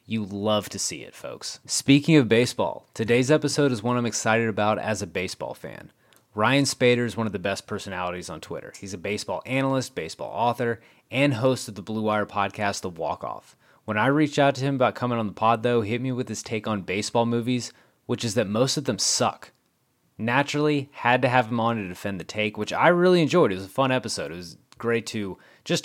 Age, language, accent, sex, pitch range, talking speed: 30-49, English, American, male, 105-125 Hz, 225 wpm